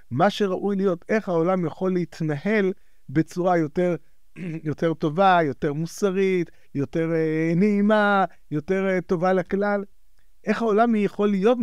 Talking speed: 125 wpm